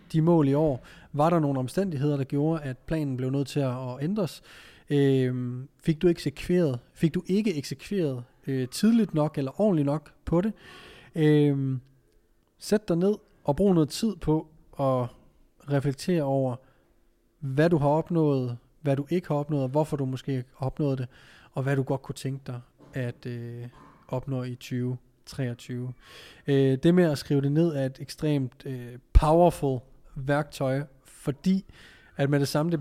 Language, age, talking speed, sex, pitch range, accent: Danish, 30-49, 170 wpm, male, 130-155 Hz, native